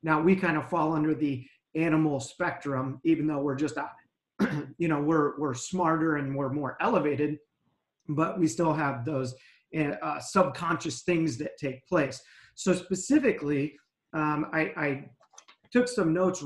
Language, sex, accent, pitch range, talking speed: English, male, American, 150-180 Hz, 150 wpm